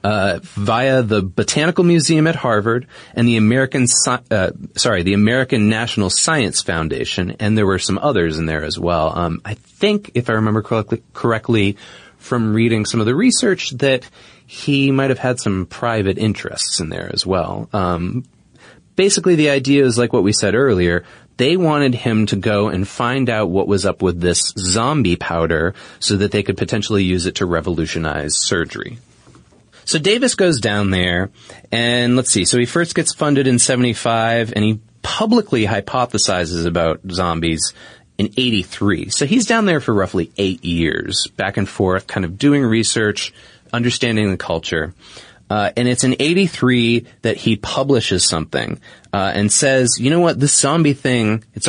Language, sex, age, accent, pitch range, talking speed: English, male, 30-49, American, 100-130 Hz, 170 wpm